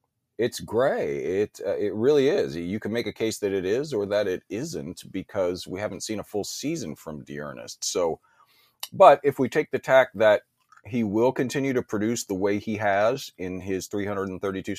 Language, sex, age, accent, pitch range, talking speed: English, male, 40-59, American, 95-130 Hz, 195 wpm